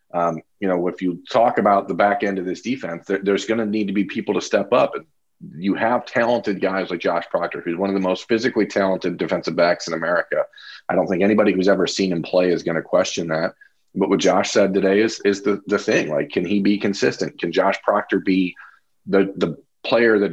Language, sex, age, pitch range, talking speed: English, male, 40-59, 90-110 Hz, 235 wpm